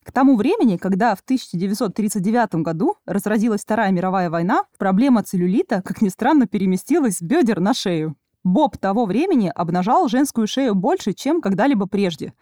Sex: female